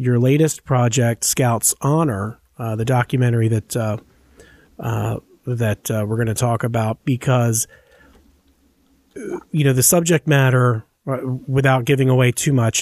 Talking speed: 135 wpm